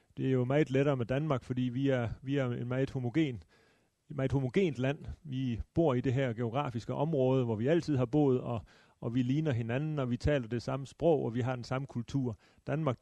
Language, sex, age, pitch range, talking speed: Danish, male, 30-49, 120-145 Hz, 210 wpm